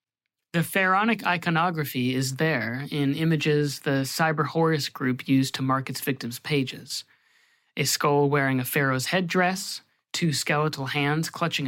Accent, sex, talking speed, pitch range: American, male, 135 wpm, 135-160 Hz